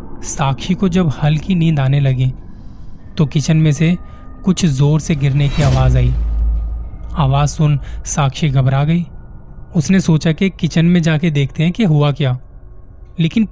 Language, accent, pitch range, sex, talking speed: Hindi, native, 130-165 Hz, male, 155 wpm